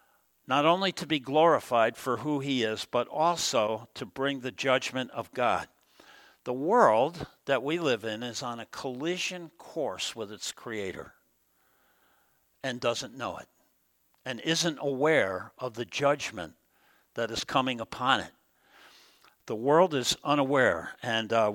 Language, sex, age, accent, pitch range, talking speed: English, male, 60-79, American, 125-165 Hz, 145 wpm